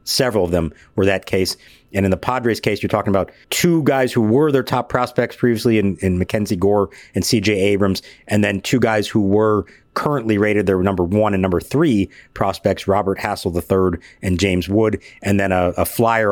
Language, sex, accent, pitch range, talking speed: English, male, American, 95-120 Hz, 200 wpm